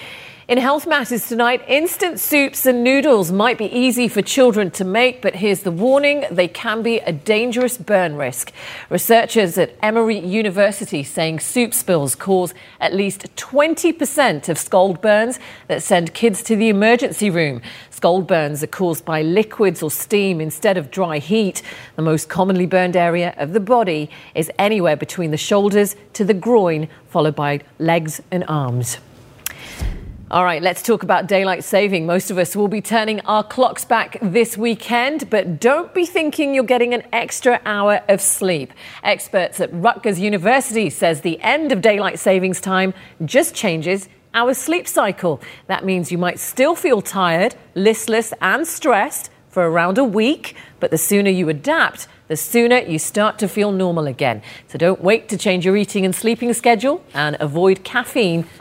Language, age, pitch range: English, 40-59, 170-230 Hz